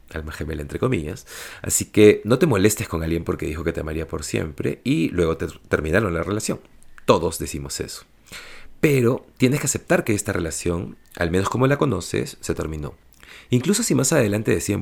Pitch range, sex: 80-115 Hz, male